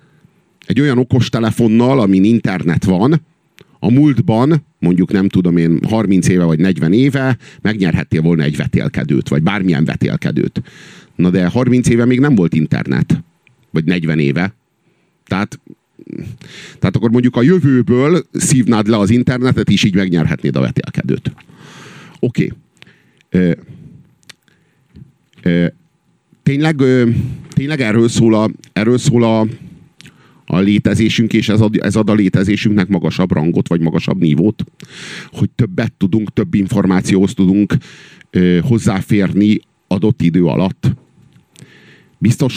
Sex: male